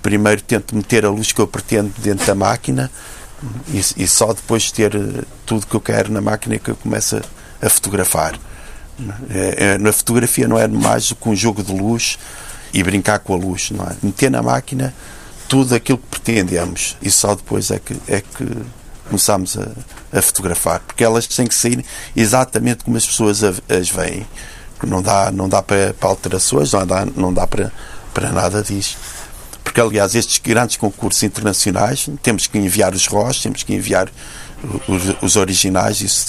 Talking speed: 180 wpm